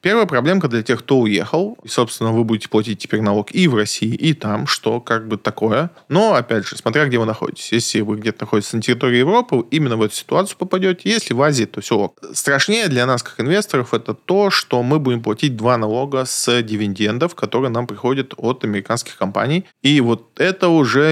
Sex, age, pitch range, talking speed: male, 20-39, 110-155 Hz, 200 wpm